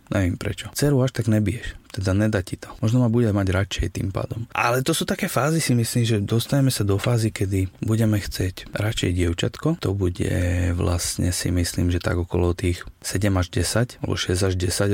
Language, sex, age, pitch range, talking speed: Slovak, male, 30-49, 95-115 Hz, 205 wpm